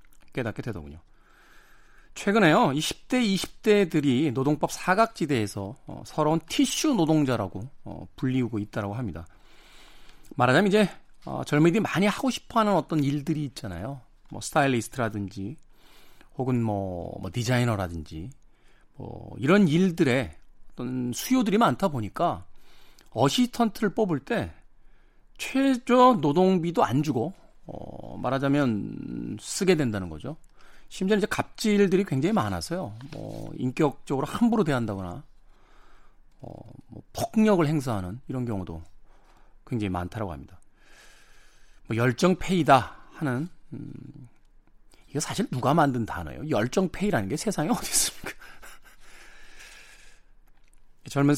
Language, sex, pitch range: Korean, male, 115-185 Hz